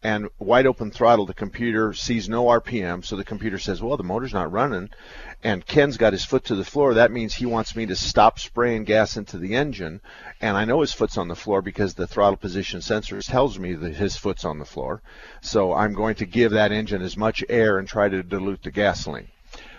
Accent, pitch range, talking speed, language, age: American, 100-135 Hz, 225 wpm, English, 50-69